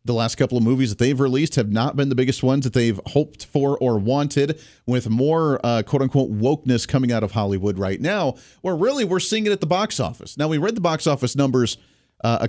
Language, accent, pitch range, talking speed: English, American, 110-145 Hz, 235 wpm